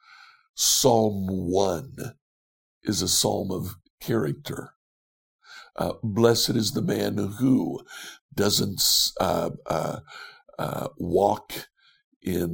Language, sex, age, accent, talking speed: English, male, 60-79, American, 90 wpm